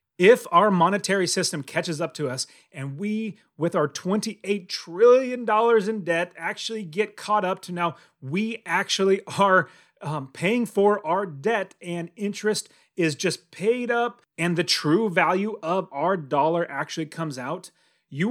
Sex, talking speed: male, 155 wpm